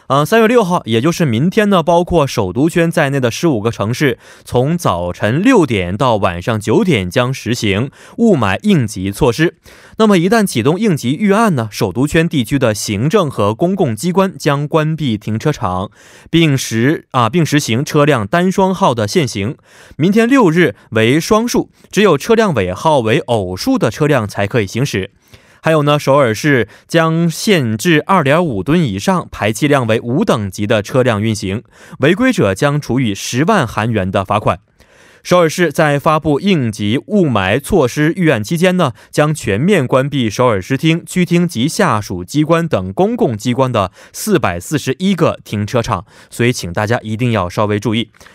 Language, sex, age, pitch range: Korean, male, 20-39, 115-170 Hz